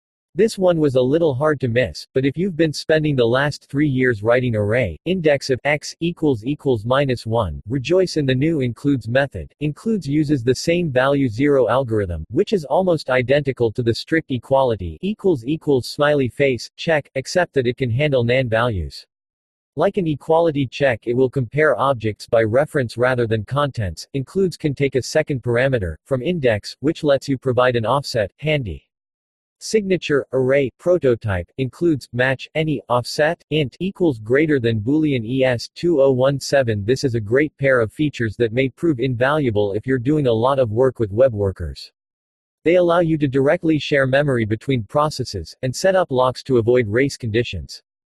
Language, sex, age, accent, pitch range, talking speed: English, male, 40-59, American, 120-150 Hz, 175 wpm